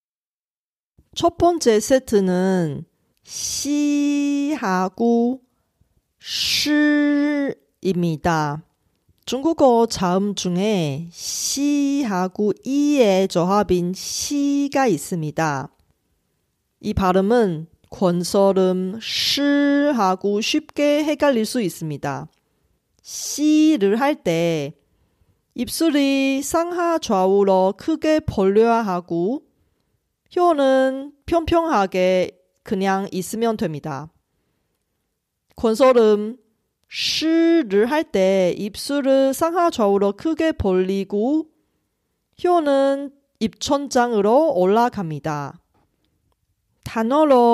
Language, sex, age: Korean, female, 40-59